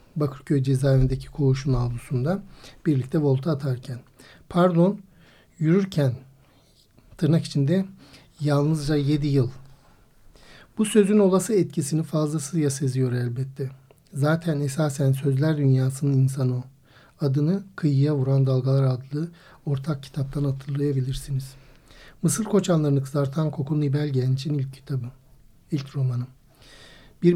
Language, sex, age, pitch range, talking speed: Turkish, male, 60-79, 135-155 Hz, 100 wpm